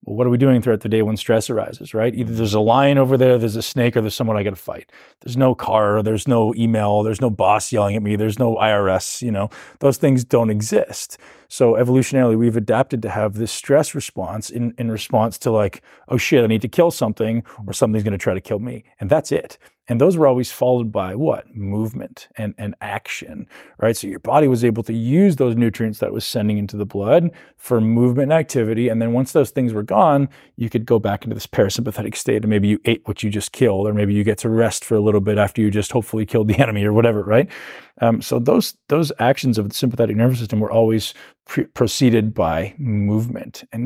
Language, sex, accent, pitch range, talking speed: English, male, American, 105-125 Hz, 235 wpm